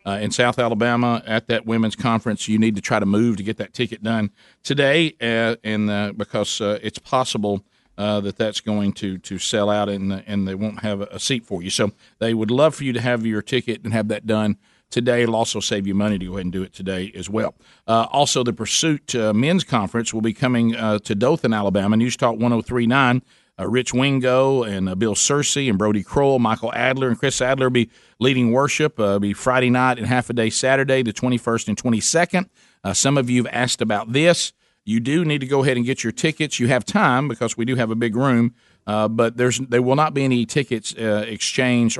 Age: 50-69